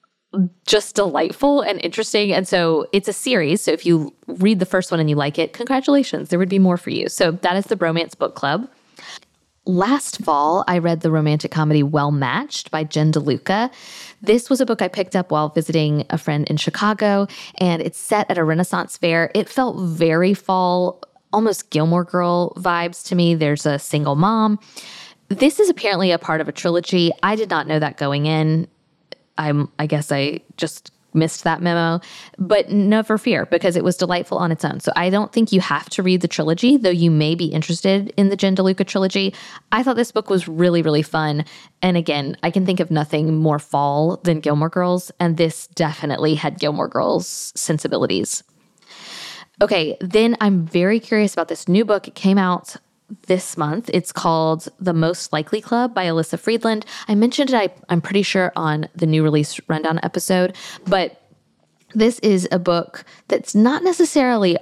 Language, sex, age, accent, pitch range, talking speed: English, female, 10-29, American, 160-205 Hz, 185 wpm